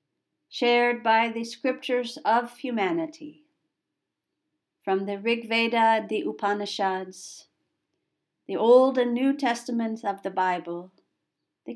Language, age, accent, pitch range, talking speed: English, 50-69, American, 215-300 Hz, 105 wpm